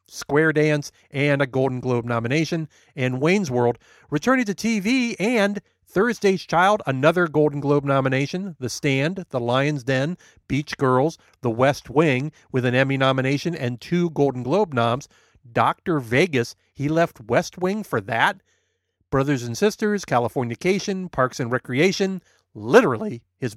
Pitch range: 130-190 Hz